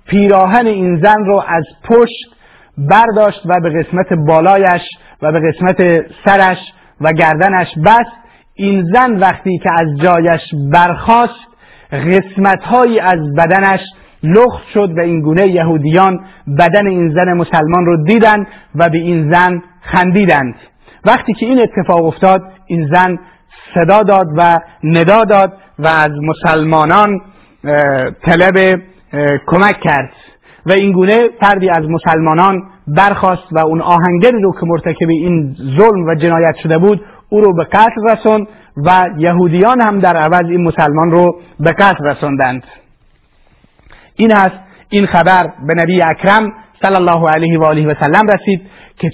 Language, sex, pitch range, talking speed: Persian, male, 165-200 Hz, 135 wpm